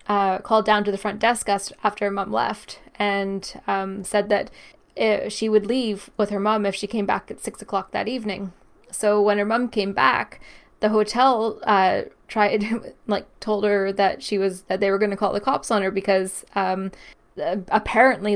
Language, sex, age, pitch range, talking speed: English, female, 10-29, 200-235 Hz, 195 wpm